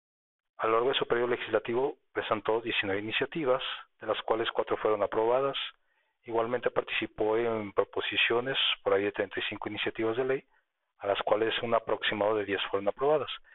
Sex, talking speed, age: male, 160 wpm, 40-59